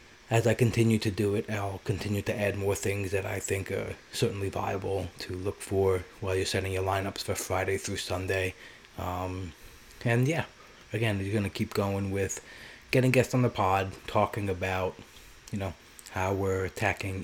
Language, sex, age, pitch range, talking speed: English, male, 20-39, 95-110 Hz, 180 wpm